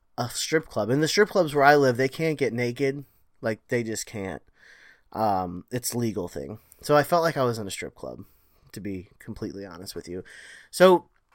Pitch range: 115-155 Hz